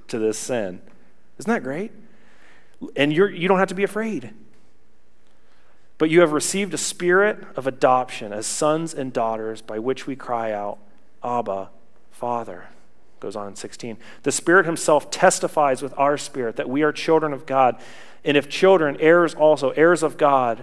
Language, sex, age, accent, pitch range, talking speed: English, male, 40-59, American, 115-155 Hz, 165 wpm